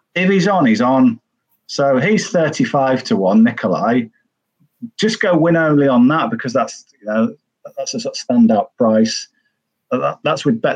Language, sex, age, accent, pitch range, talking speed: English, male, 40-59, British, 145-230 Hz, 165 wpm